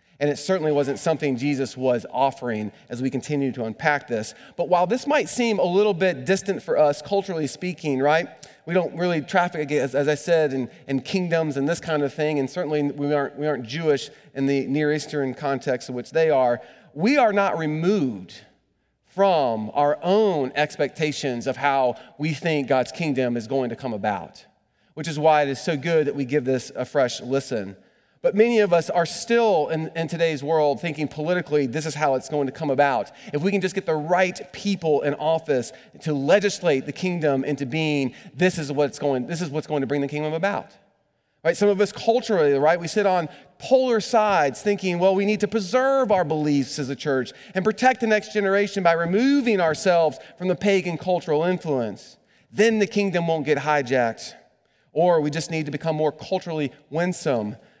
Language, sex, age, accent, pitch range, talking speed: English, male, 30-49, American, 140-180 Hz, 200 wpm